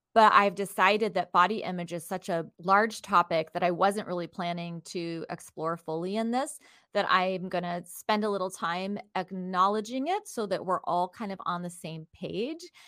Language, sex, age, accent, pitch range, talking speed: English, female, 30-49, American, 165-195 Hz, 190 wpm